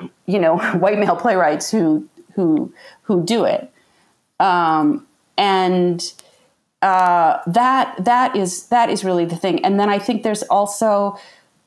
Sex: female